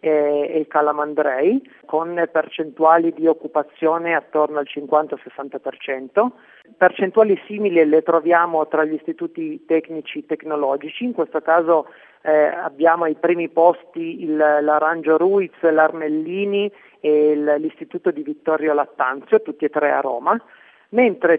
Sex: male